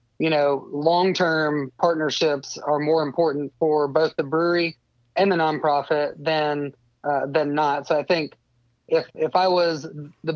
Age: 30-49